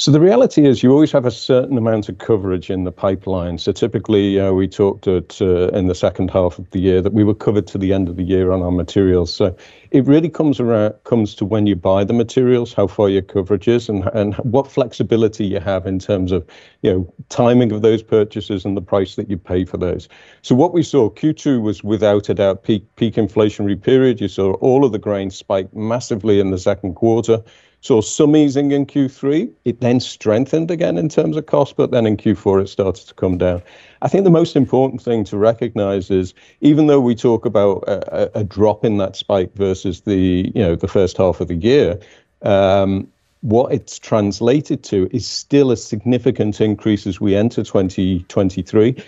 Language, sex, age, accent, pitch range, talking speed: English, male, 50-69, British, 95-125 Hz, 210 wpm